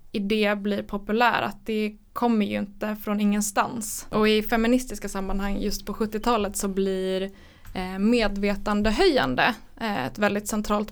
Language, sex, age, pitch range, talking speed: Swedish, female, 20-39, 205-230 Hz, 125 wpm